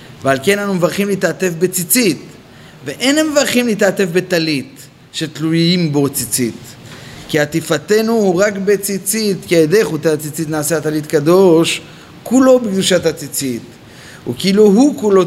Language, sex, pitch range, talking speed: Hebrew, male, 155-200 Hz, 125 wpm